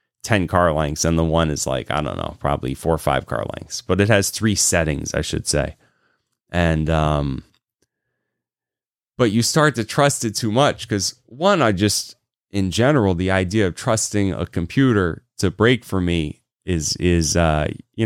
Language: English